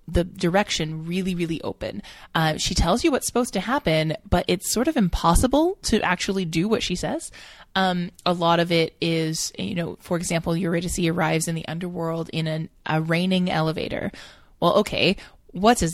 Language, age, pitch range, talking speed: English, 20-39, 165-200 Hz, 180 wpm